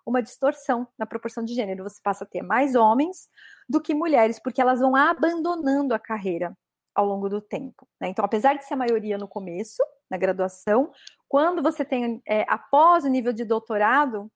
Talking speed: 185 wpm